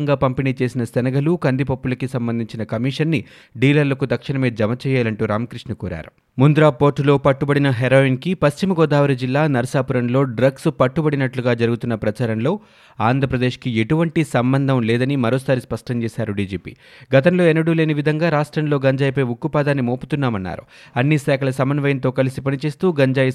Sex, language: male, Telugu